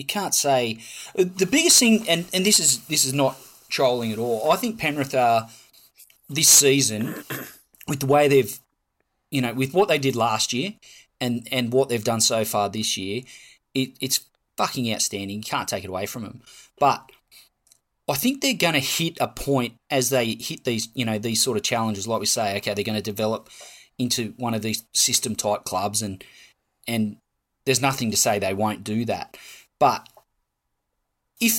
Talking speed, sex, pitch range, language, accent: 185 wpm, male, 110-140 Hz, English, Australian